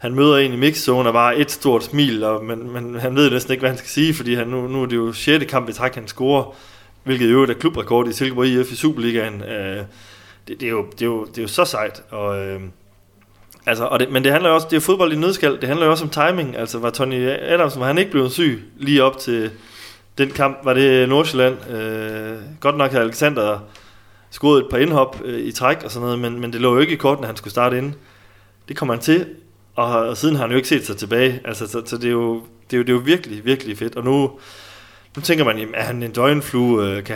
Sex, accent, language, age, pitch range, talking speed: male, native, Danish, 30-49, 105-135 Hz, 245 wpm